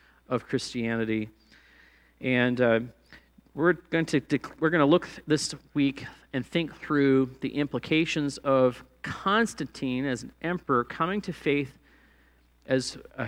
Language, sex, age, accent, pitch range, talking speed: English, male, 40-59, American, 120-155 Hz, 135 wpm